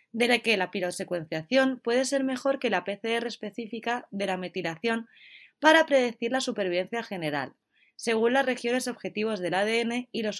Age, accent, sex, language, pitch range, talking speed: 20-39, Spanish, female, Spanish, 180-245 Hz, 160 wpm